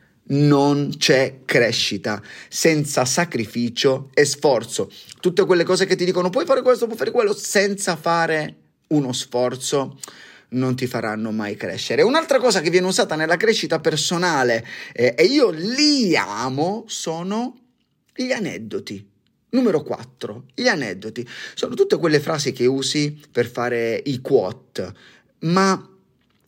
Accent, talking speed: native, 135 wpm